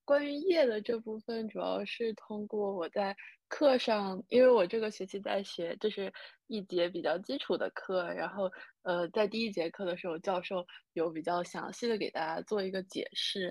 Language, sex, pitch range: Chinese, female, 190-260 Hz